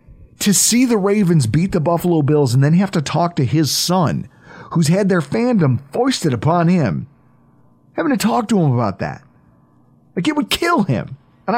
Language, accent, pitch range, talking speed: English, American, 135-205 Hz, 185 wpm